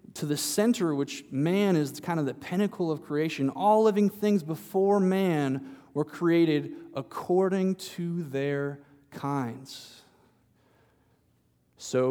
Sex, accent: male, American